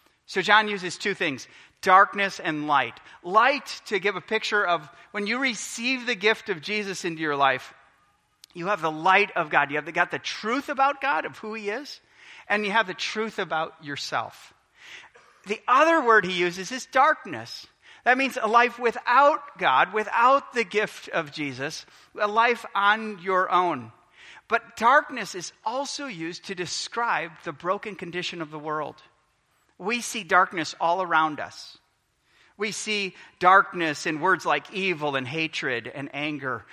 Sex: male